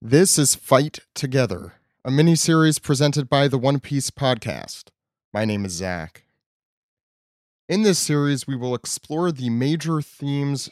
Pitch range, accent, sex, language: 110-140 Hz, American, male, English